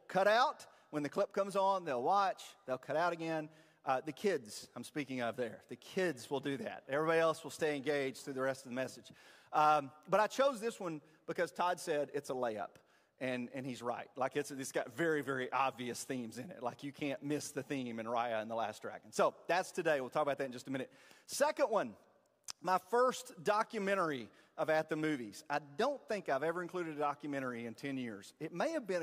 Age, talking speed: 40-59, 225 wpm